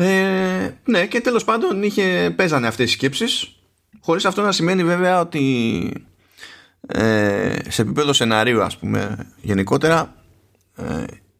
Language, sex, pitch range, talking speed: Greek, male, 100-135 Hz, 120 wpm